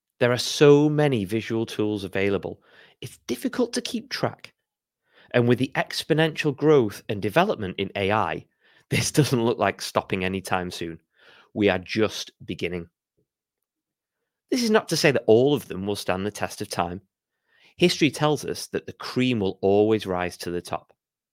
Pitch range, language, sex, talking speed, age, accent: 100-150 Hz, English, male, 165 wpm, 30-49, British